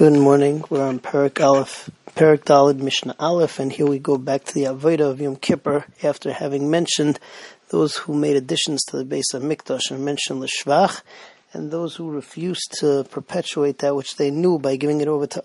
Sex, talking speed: male, 195 wpm